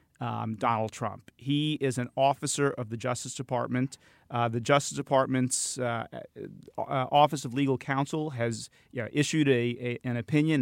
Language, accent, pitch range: English, American, 120-140 Hz